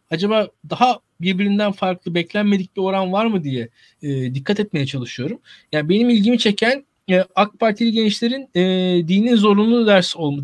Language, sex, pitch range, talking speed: Turkish, male, 180-235 Hz, 155 wpm